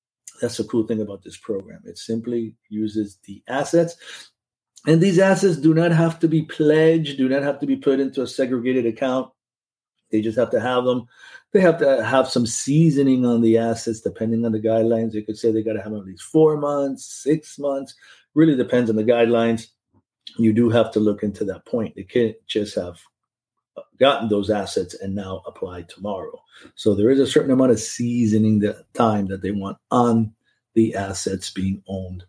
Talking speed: 195 wpm